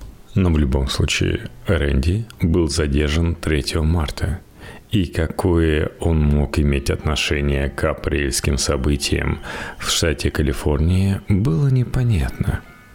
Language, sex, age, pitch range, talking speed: Russian, male, 40-59, 75-105 Hz, 105 wpm